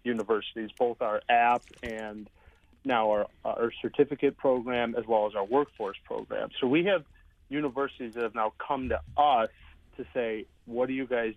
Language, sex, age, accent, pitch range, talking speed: English, male, 30-49, American, 105-130 Hz, 170 wpm